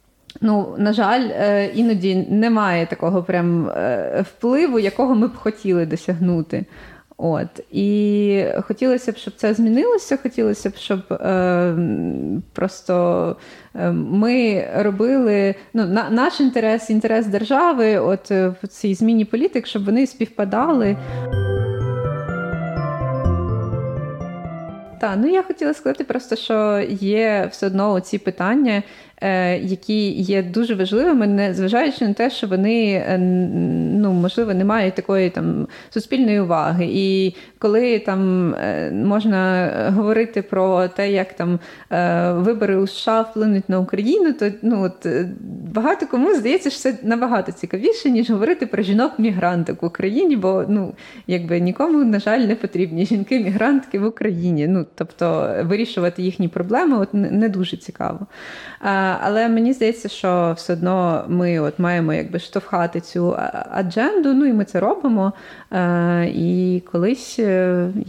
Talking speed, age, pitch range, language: 125 wpm, 20-39, 180-225 Hz, Ukrainian